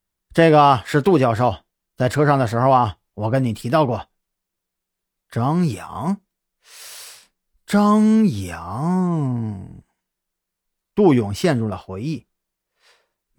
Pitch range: 115-180 Hz